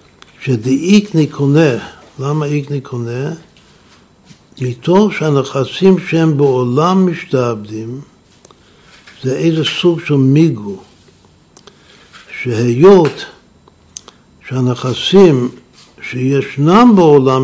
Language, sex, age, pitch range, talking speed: Hebrew, male, 60-79, 125-160 Hz, 65 wpm